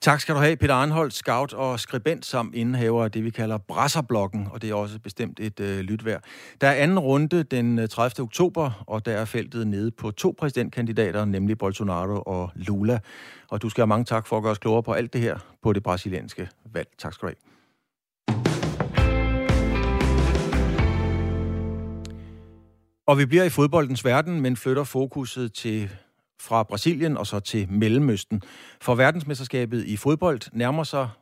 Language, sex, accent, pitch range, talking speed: Danish, male, native, 105-130 Hz, 165 wpm